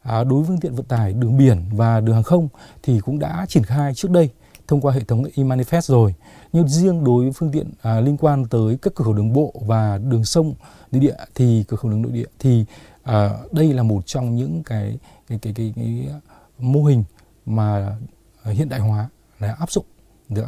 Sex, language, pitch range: male, Vietnamese, 110-150 Hz